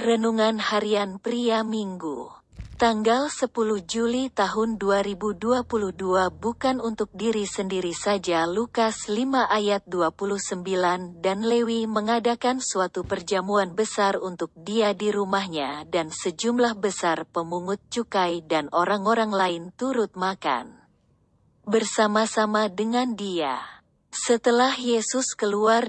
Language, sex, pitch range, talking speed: Indonesian, female, 185-225 Hz, 100 wpm